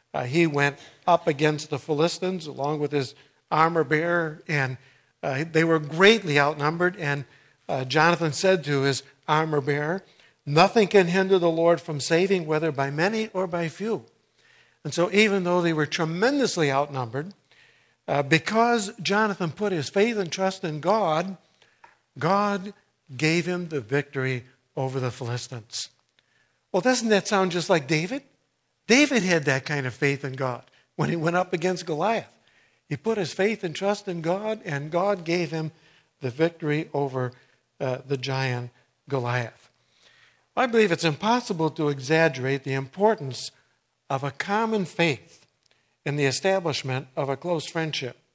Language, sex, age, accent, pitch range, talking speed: English, male, 60-79, American, 140-185 Hz, 155 wpm